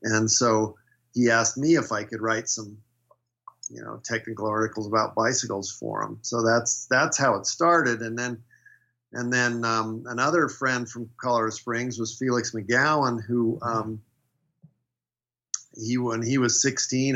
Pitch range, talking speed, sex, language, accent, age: 110-125 Hz, 155 wpm, male, English, American, 50-69